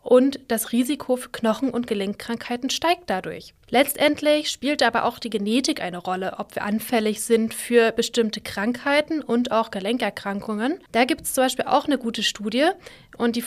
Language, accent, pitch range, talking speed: German, German, 215-260 Hz, 170 wpm